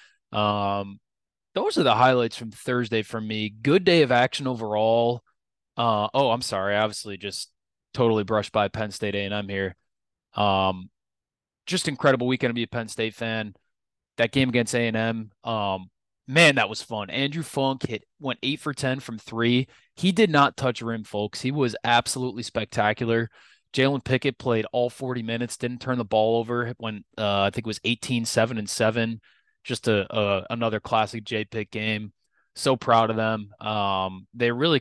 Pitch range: 100-120 Hz